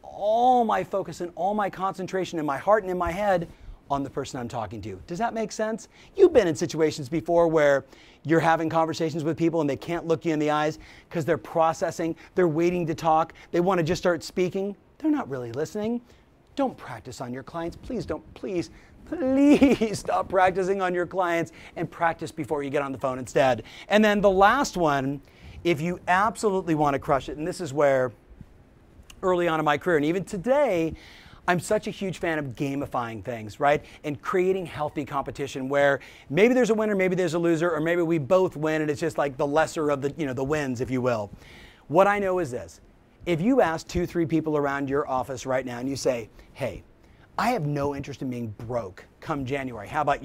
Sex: male